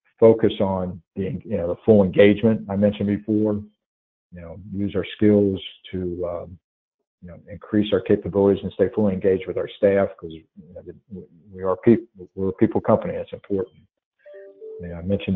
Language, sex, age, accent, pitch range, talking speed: English, male, 50-69, American, 95-110 Hz, 180 wpm